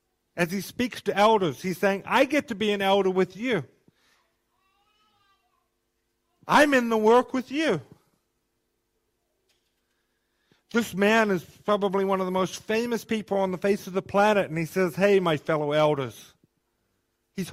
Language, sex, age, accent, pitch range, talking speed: English, male, 50-69, American, 165-210 Hz, 155 wpm